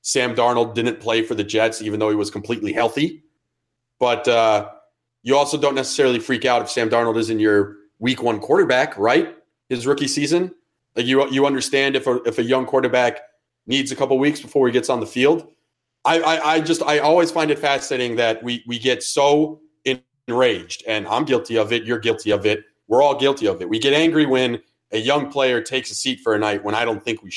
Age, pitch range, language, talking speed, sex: 30-49, 120-160 Hz, English, 220 wpm, male